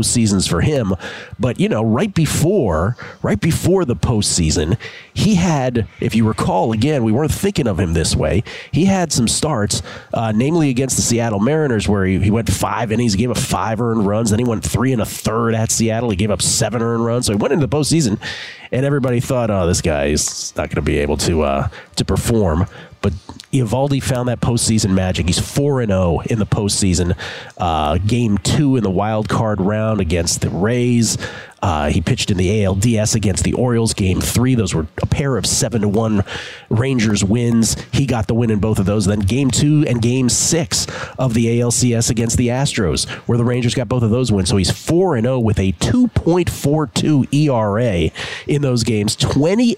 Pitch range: 105-130 Hz